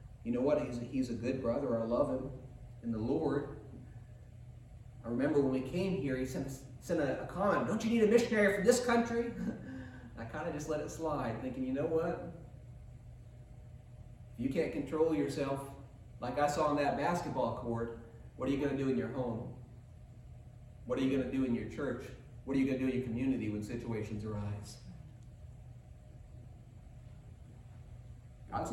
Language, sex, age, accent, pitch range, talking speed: English, male, 30-49, American, 120-145 Hz, 180 wpm